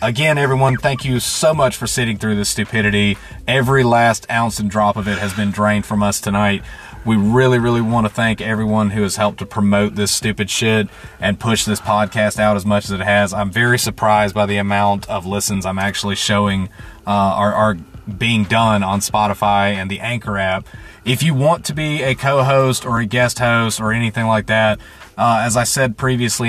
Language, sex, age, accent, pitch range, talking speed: English, male, 30-49, American, 105-125 Hz, 205 wpm